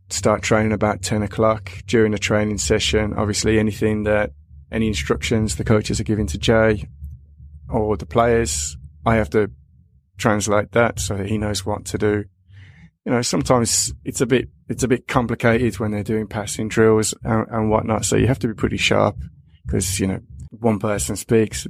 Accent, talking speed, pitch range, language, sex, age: British, 185 wpm, 100-115 Hz, English, male, 20-39